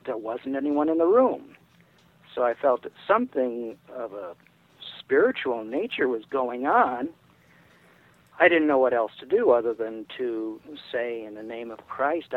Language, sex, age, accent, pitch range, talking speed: English, male, 50-69, American, 125-165 Hz, 165 wpm